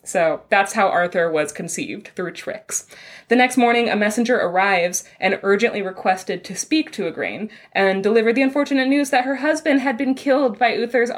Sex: female